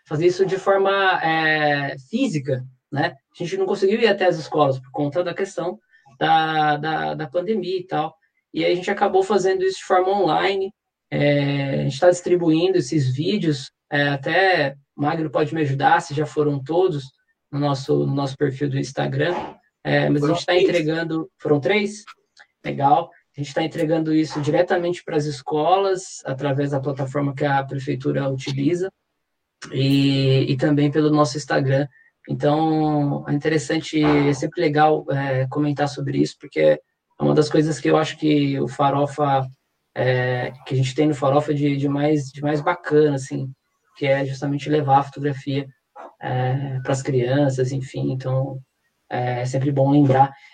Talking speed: 160 wpm